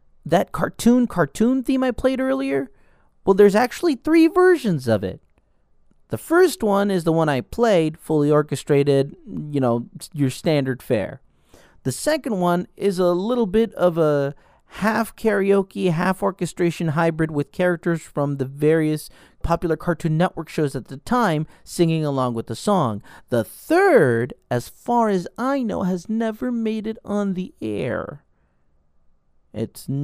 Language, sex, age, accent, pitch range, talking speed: English, male, 40-59, American, 145-205 Hz, 145 wpm